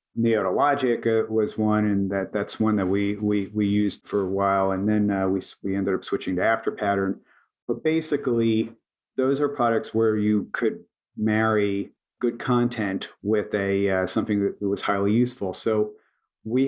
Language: English